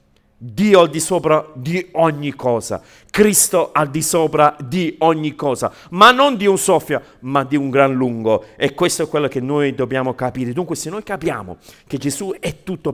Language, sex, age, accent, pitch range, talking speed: Italian, male, 50-69, native, 150-200 Hz, 185 wpm